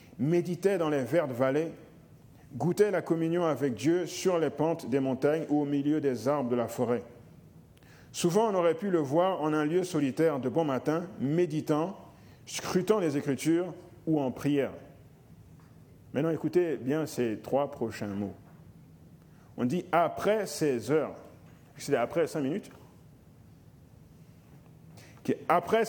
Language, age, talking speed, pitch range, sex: French, 50-69, 140 wpm, 130-165 Hz, male